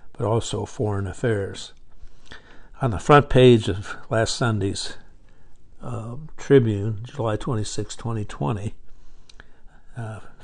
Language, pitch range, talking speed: English, 105-120 Hz, 90 wpm